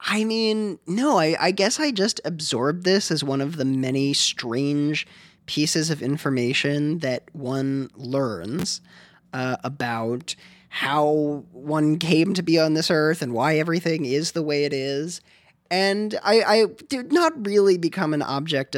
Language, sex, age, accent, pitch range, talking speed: English, male, 20-39, American, 130-170 Hz, 155 wpm